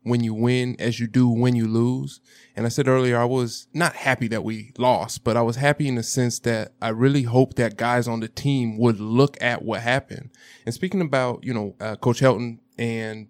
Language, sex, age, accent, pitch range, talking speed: English, male, 20-39, American, 115-135 Hz, 225 wpm